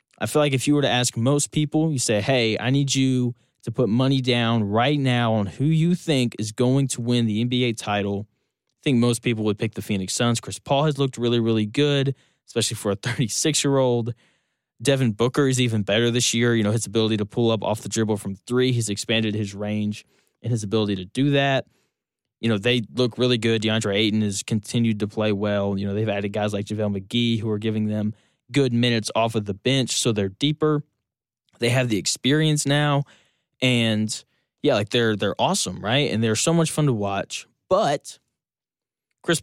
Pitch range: 110-135 Hz